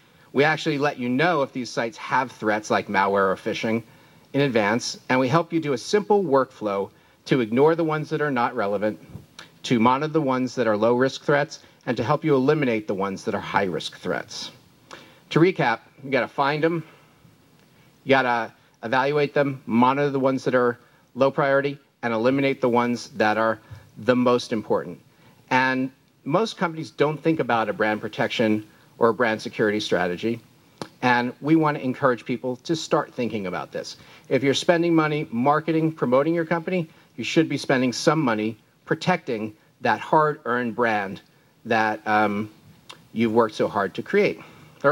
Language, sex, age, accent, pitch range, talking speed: English, male, 40-59, American, 120-155 Hz, 175 wpm